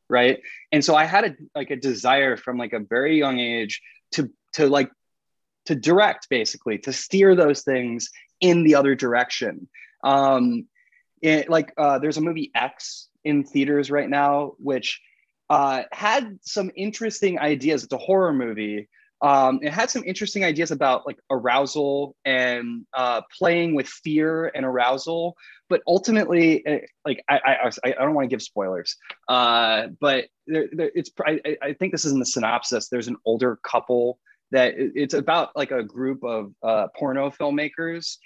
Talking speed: 165 wpm